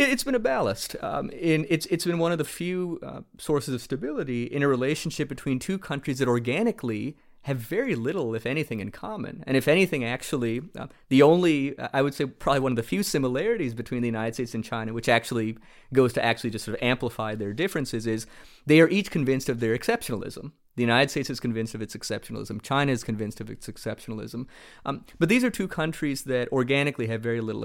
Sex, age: male, 30-49